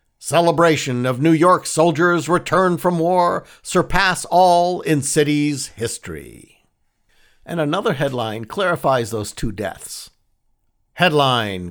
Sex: male